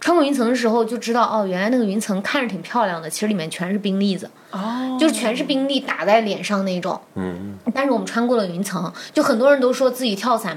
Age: 20-39